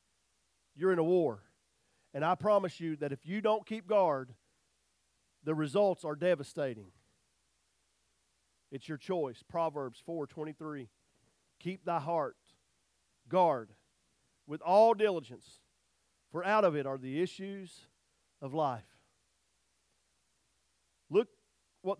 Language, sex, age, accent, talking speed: English, male, 40-59, American, 115 wpm